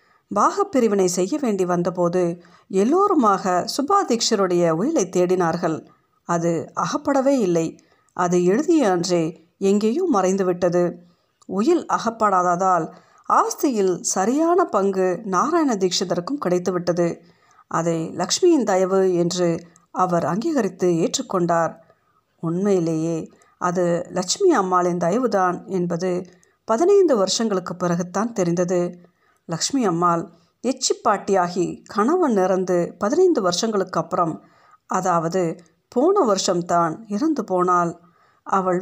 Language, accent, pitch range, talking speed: Tamil, native, 175-230 Hz, 85 wpm